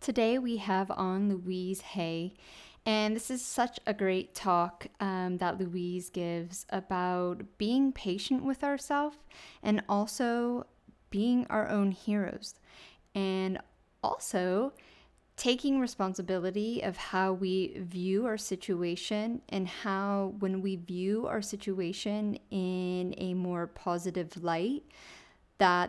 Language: English